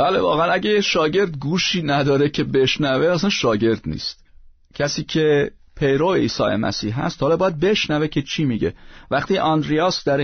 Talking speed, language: 150 wpm, Persian